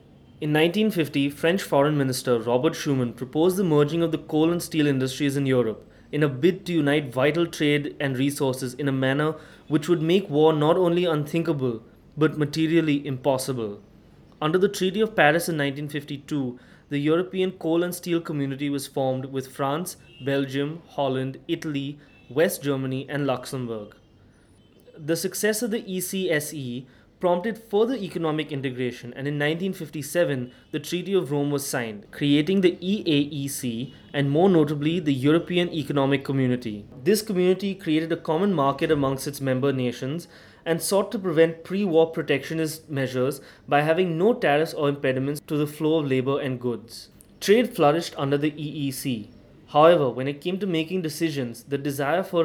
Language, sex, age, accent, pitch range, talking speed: English, male, 20-39, Indian, 135-165 Hz, 155 wpm